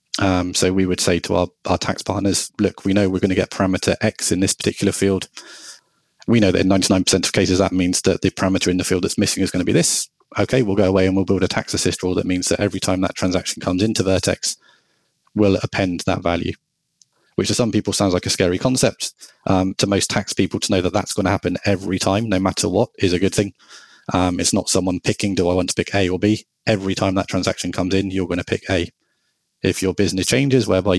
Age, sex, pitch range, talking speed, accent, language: 20-39, male, 95-105 Hz, 250 wpm, British, English